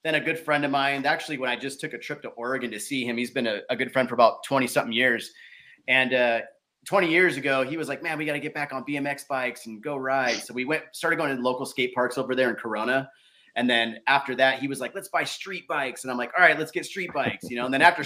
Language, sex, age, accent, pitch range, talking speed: English, male, 30-49, American, 125-170 Hz, 290 wpm